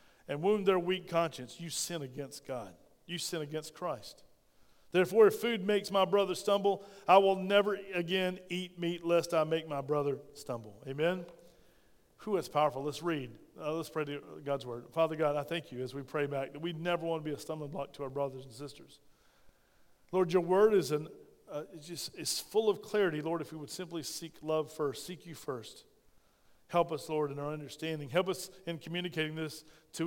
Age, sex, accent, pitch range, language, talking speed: 40-59, male, American, 145-185 Hz, English, 190 wpm